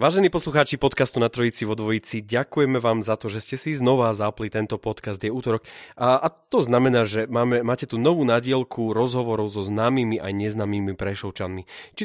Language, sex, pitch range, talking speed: Slovak, male, 105-125 Hz, 180 wpm